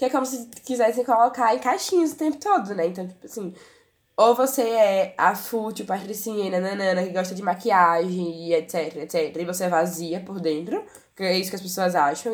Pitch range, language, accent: 185-240 Hz, Portuguese, Brazilian